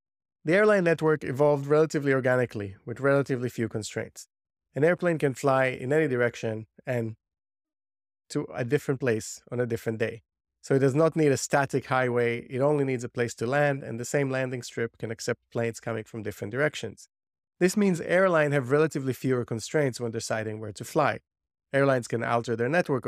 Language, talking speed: English, 180 wpm